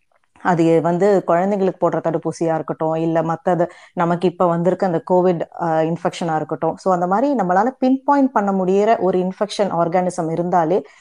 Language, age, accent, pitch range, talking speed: Tamil, 30-49, native, 175-225 Hz, 140 wpm